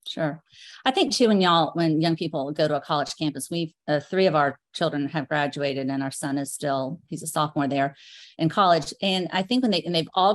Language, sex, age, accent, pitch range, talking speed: English, female, 40-59, American, 150-195 Hz, 240 wpm